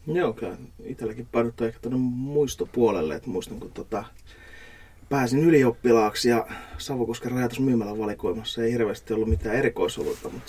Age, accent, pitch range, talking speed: 30-49, native, 110-135 Hz, 120 wpm